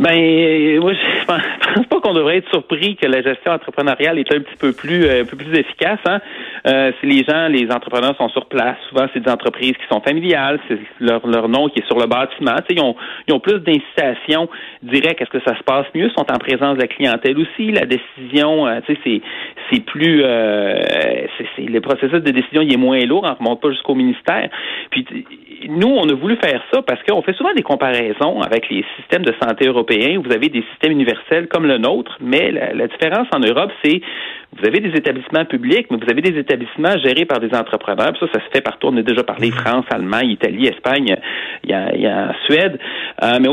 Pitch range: 125-185 Hz